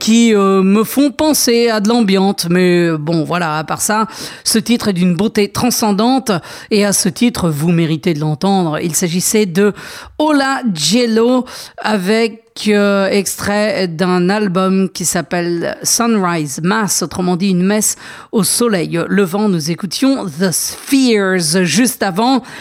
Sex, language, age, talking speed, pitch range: female, English, 40-59, 150 wpm, 185-230 Hz